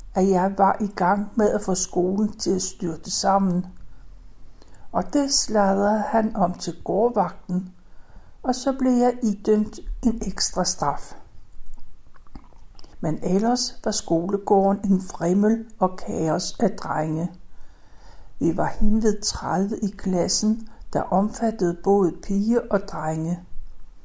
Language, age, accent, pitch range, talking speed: Danish, 60-79, native, 180-225 Hz, 125 wpm